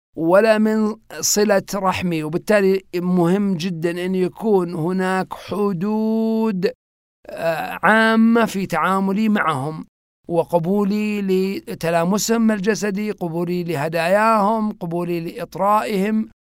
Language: Arabic